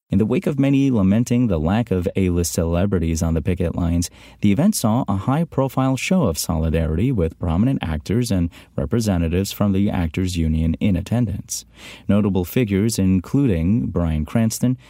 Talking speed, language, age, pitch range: 155 wpm, English, 30-49, 85-110 Hz